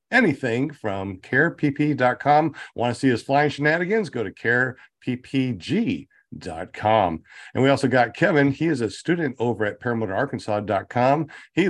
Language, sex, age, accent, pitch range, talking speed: English, male, 50-69, American, 110-140 Hz, 130 wpm